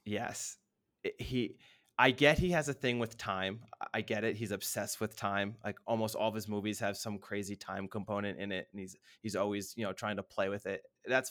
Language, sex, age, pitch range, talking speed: English, male, 20-39, 105-125 Hz, 225 wpm